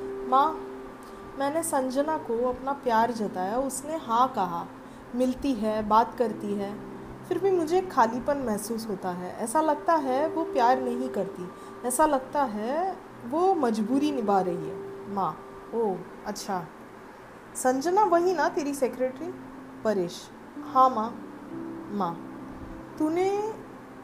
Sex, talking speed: female, 125 wpm